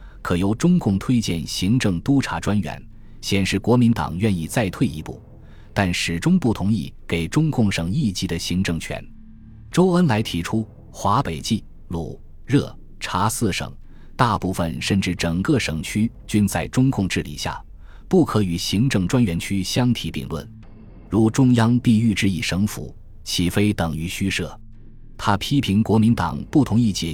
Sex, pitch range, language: male, 85-115 Hz, Chinese